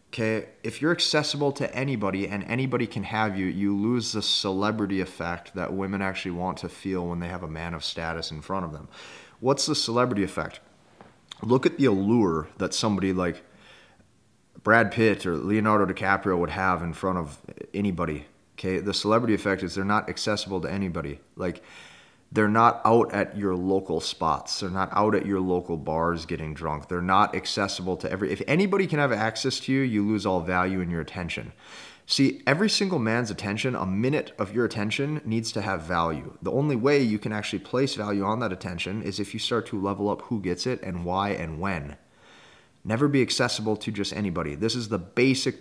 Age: 30-49